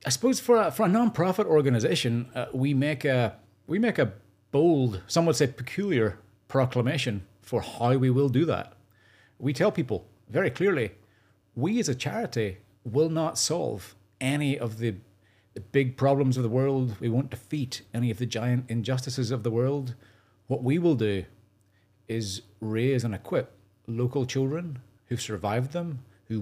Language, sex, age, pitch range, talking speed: English, male, 40-59, 105-130 Hz, 165 wpm